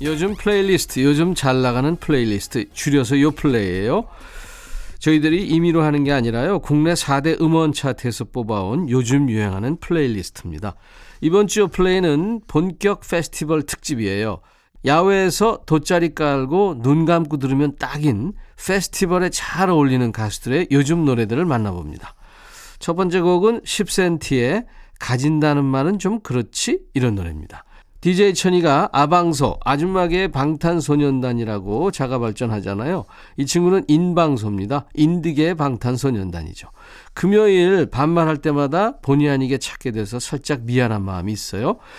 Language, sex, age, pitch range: Korean, male, 40-59, 125-175 Hz